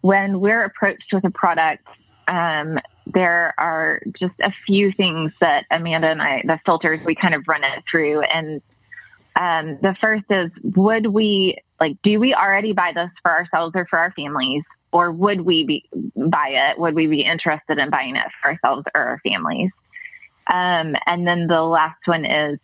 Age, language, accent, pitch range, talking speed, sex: 20-39, English, American, 160-195 Hz, 180 wpm, female